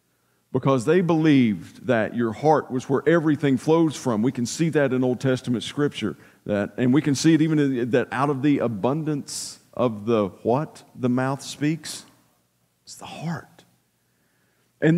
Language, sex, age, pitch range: English, male, 50-69, 100-145 Hz